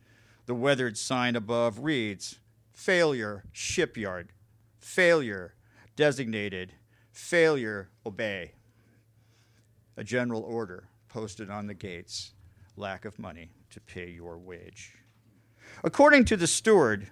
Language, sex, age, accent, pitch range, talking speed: English, male, 50-69, American, 110-140 Hz, 100 wpm